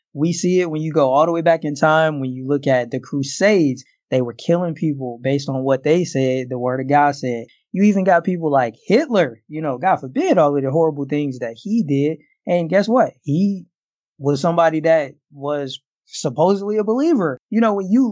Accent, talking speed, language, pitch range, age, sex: American, 215 wpm, English, 140-170 Hz, 20-39, male